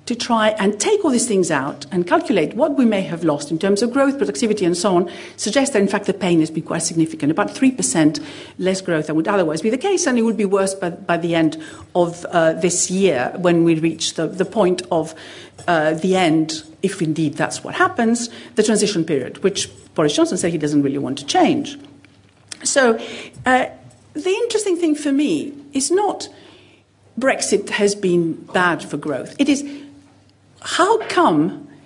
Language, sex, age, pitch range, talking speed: English, female, 50-69, 180-290 Hz, 195 wpm